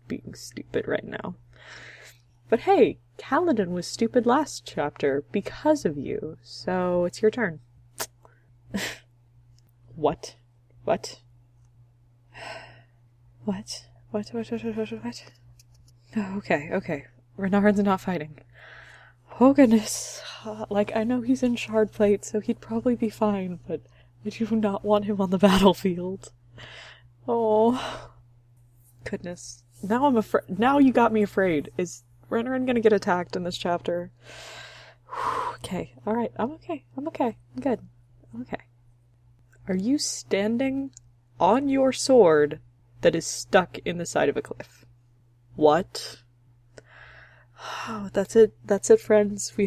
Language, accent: English, American